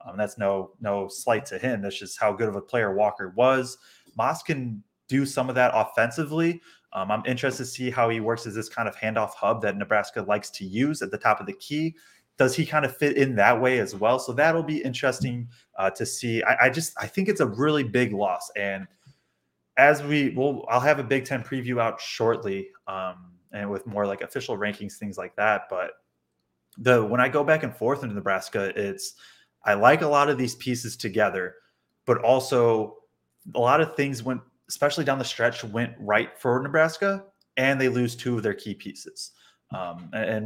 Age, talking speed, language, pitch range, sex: 20-39, 210 wpm, English, 105-140 Hz, male